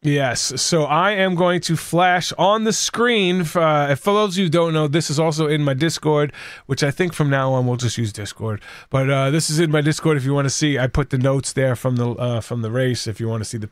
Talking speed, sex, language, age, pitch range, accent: 280 wpm, male, English, 30-49, 120-155 Hz, American